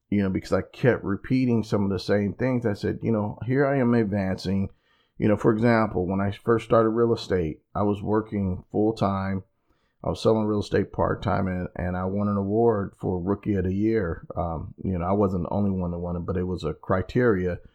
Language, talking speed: English, 225 wpm